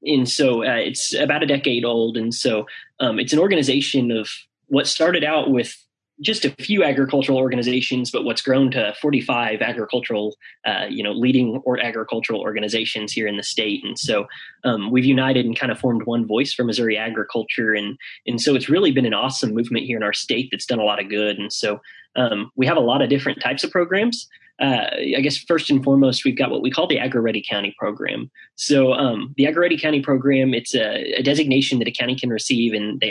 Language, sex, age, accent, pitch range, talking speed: English, male, 20-39, American, 115-135 Hz, 215 wpm